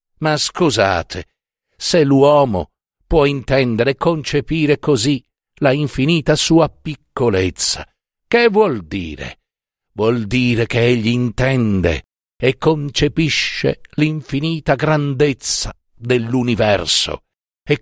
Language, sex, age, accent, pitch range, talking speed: Italian, male, 50-69, native, 115-160 Hz, 90 wpm